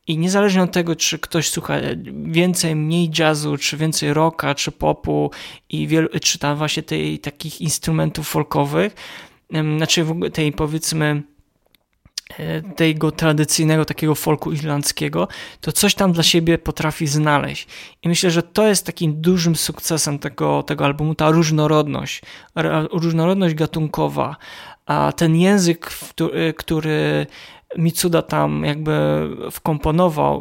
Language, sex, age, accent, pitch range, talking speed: Polish, male, 20-39, native, 150-175 Hz, 120 wpm